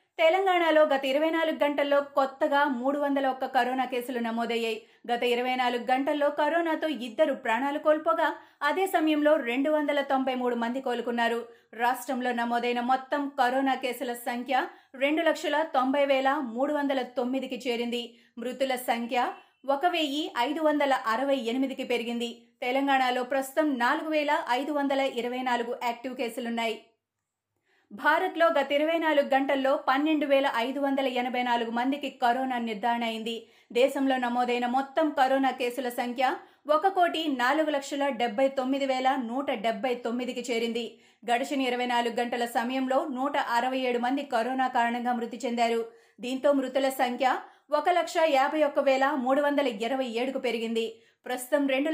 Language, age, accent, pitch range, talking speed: Telugu, 30-49, native, 245-285 Hz, 105 wpm